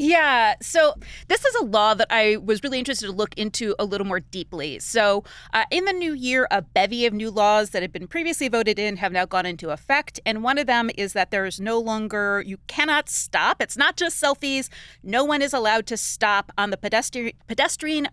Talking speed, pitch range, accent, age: 220 wpm, 205-275 Hz, American, 30-49